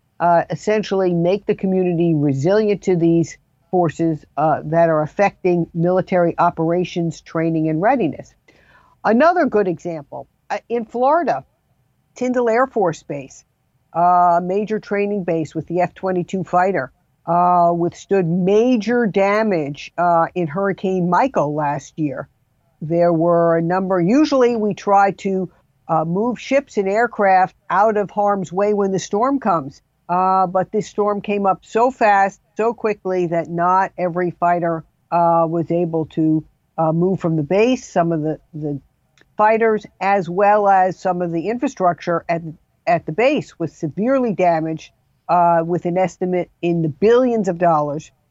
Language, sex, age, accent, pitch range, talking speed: English, female, 50-69, American, 165-205 Hz, 145 wpm